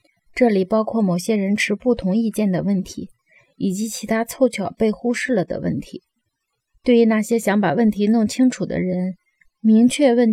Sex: female